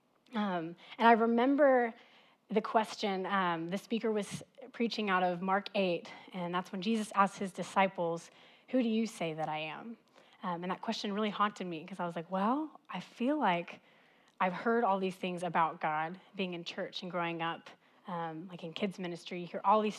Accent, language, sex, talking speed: American, English, female, 200 wpm